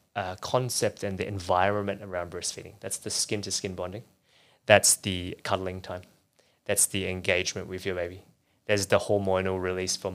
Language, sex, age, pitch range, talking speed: English, male, 20-39, 95-115 Hz, 155 wpm